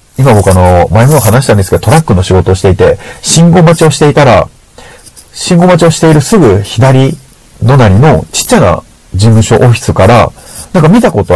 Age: 40-59